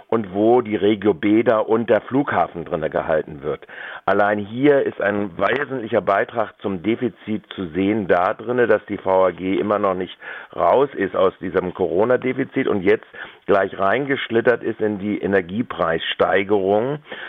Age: 50-69